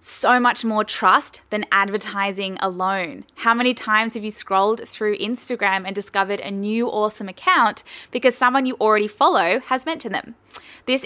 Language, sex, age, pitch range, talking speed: English, female, 10-29, 195-240 Hz, 165 wpm